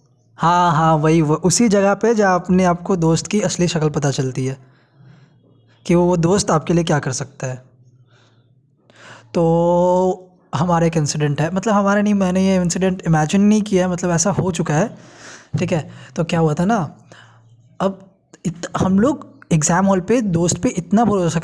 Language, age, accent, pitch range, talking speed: Hindi, 20-39, native, 155-210 Hz, 180 wpm